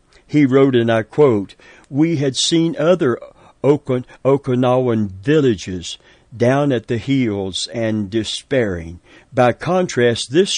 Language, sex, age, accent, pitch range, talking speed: English, male, 60-79, American, 110-150 Hz, 120 wpm